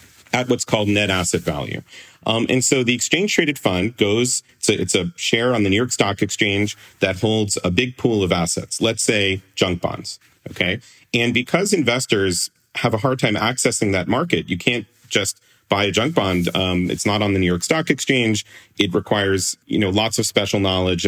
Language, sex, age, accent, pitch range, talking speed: English, male, 40-59, American, 95-125 Hz, 195 wpm